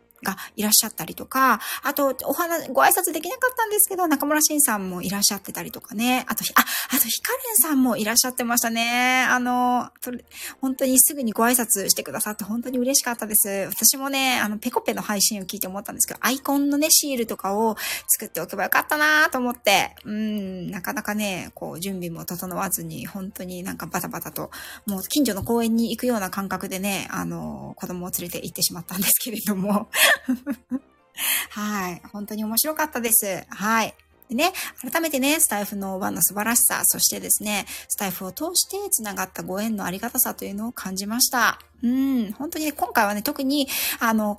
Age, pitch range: 20-39, 195-265 Hz